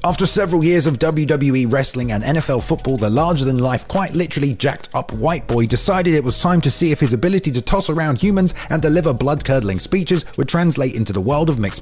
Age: 30-49